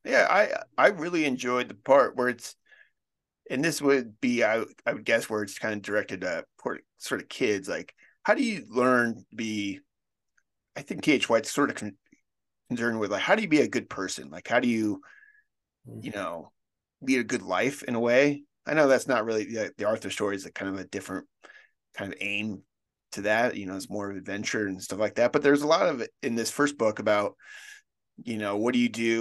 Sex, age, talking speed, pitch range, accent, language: male, 30-49, 225 wpm, 105-140 Hz, American, English